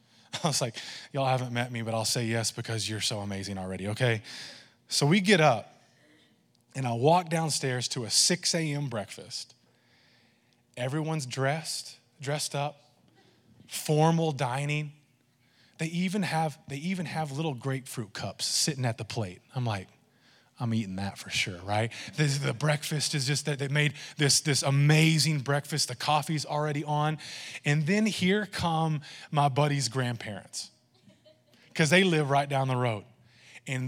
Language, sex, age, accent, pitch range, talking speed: English, male, 20-39, American, 125-165 Hz, 155 wpm